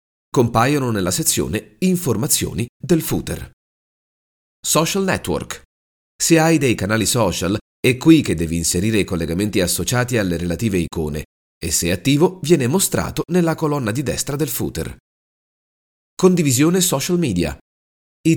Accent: native